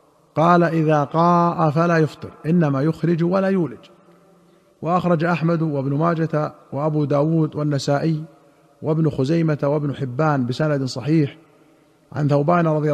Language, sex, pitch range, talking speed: Arabic, male, 135-160 Hz, 115 wpm